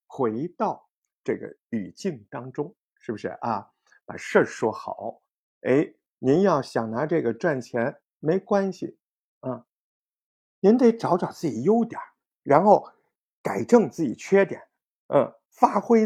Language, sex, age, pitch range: Chinese, male, 50-69, 140-215 Hz